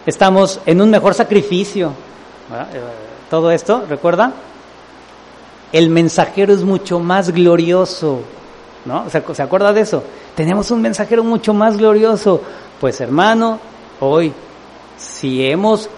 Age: 40-59